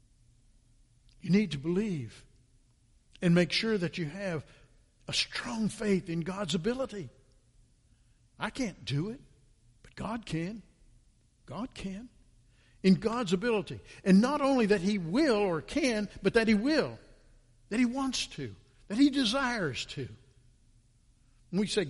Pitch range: 120-195 Hz